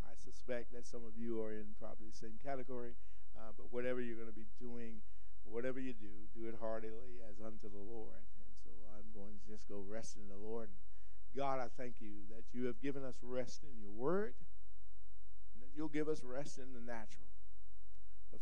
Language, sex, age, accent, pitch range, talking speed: English, male, 50-69, American, 100-130 Hz, 210 wpm